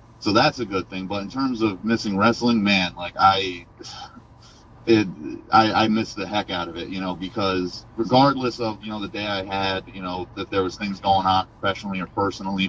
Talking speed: 215 wpm